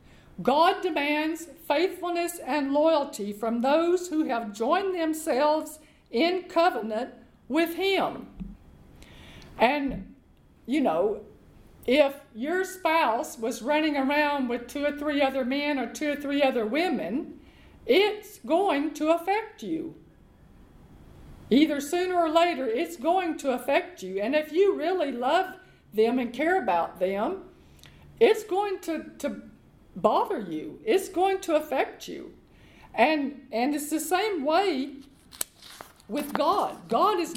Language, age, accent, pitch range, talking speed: English, 50-69, American, 260-340 Hz, 130 wpm